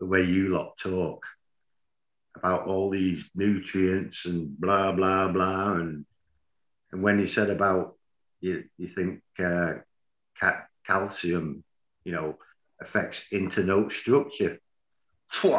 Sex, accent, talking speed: male, British, 115 wpm